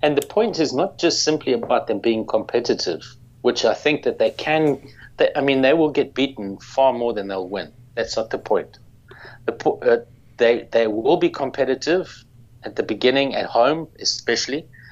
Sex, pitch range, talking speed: male, 115-135 Hz, 185 wpm